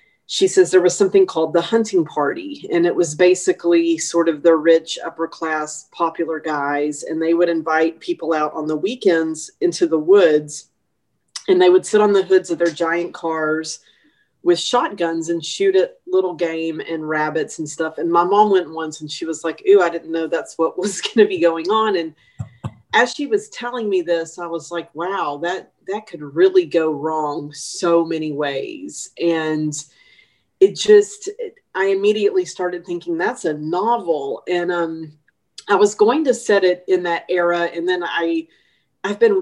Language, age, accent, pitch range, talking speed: English, 40-59, American, 160-200 Hz, 185 wpm